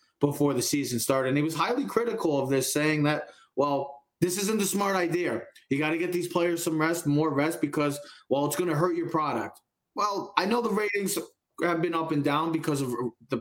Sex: male